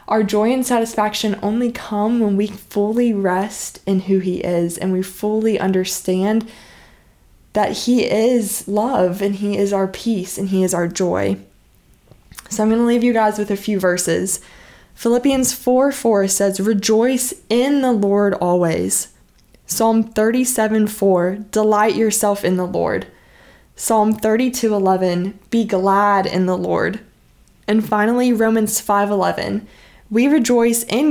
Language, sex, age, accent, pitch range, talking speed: English, female, 20-39, American, 190-230 Hz, 140 wpm